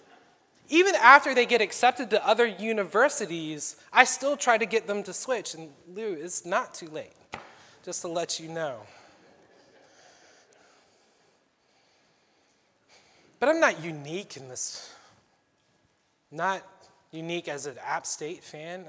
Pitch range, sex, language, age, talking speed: 155-210 Hz, male, English, 20-39, 125 wpm